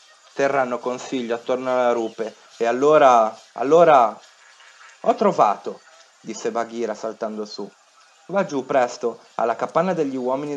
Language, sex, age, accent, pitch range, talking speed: Italian, male, 30-49, native, 115-160 Hz, 120 wpm